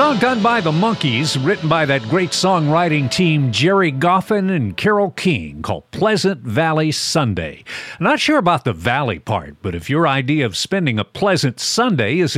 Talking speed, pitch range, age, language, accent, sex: 175 wpm, 125-190 Hz, 50-69, English, American, male